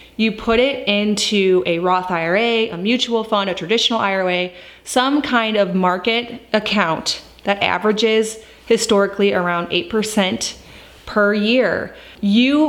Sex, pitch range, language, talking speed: female, 185-230 Hz, English, 125 wpm